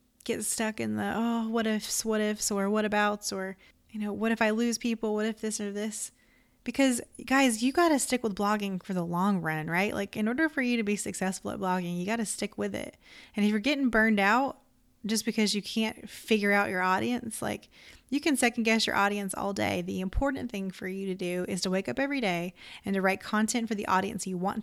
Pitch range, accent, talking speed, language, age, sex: 185-225 Hz, American, 240 wpm, English, 20-39, female